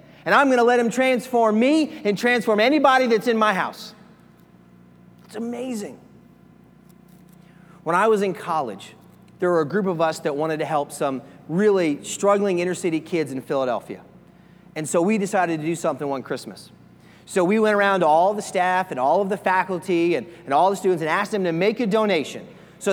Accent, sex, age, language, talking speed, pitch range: American, male, 30-49, English, 195 wpm, 170-210 Hz